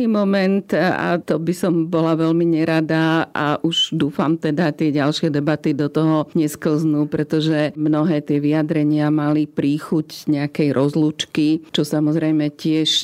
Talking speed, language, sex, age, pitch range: 135 wpm, Slovak, female, 40-59, 150-160 Hz